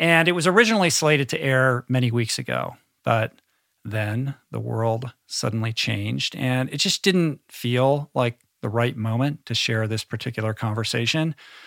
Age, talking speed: 50-69, 155 wpm